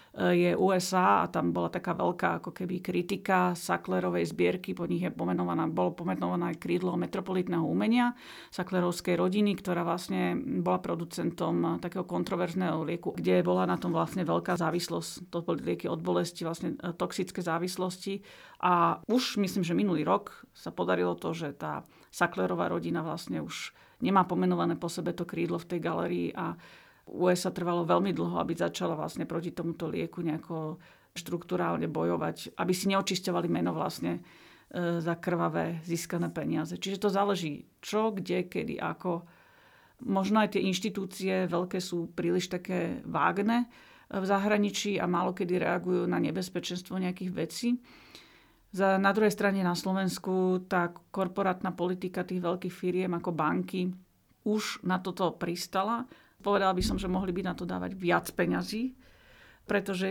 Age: 40-59